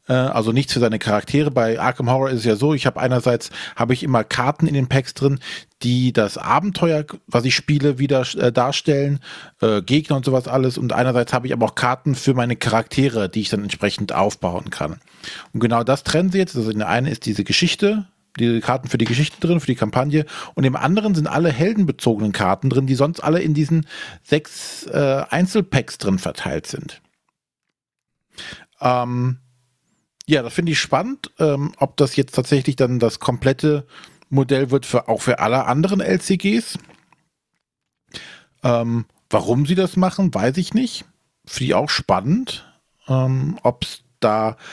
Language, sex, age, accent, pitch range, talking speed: German, male, 40-59, German, 125-155 Hz, 175 wpm